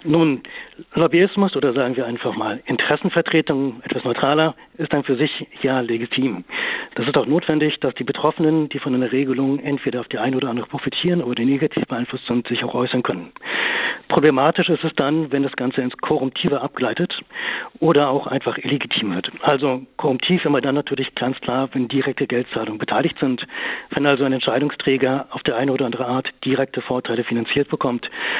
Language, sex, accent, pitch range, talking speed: German, male, German, 130-155 Hz, 180 wpm